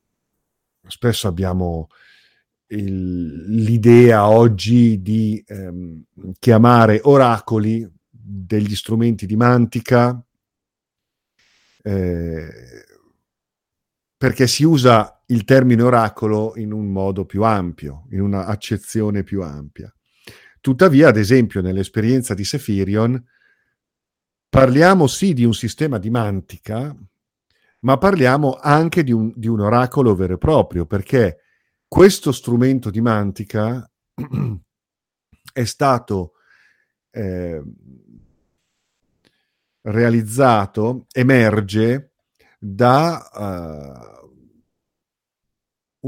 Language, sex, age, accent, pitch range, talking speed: Italian, male, 50-69, native, 100-120 Hz, 85 wpm